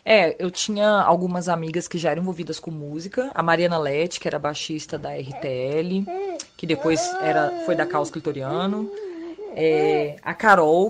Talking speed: 150 wpm